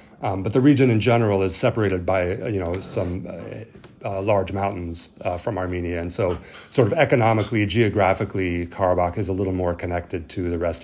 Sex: male